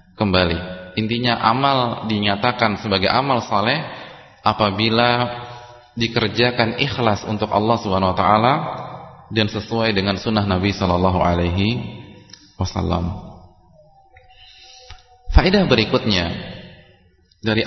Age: 30-49